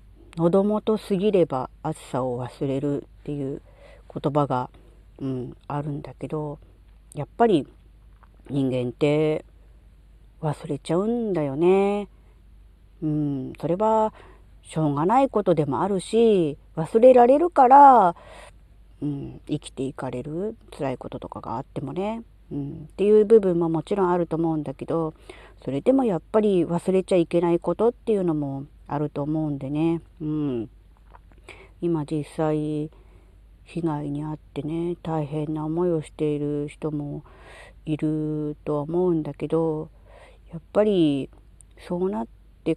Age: 40-59